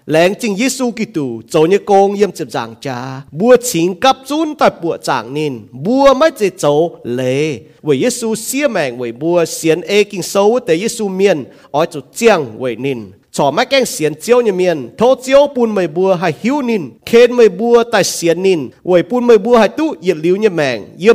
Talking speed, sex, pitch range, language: 45 wpm, male, 160-230 Hz, English